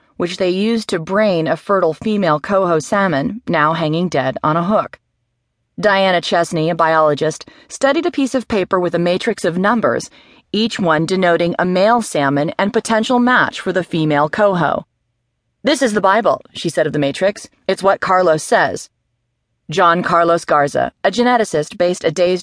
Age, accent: 30-49, American